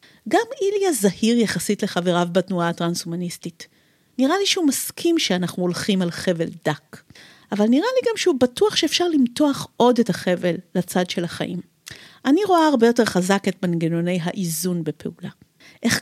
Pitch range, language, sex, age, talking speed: 180-255 Hz, Hebrew, female, 50-69, 150 wpm